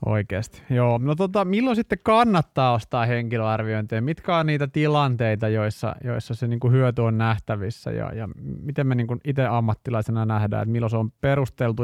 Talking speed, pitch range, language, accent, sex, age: 165 wpm, 110-135 Hz, Finnish, native, male, 30-49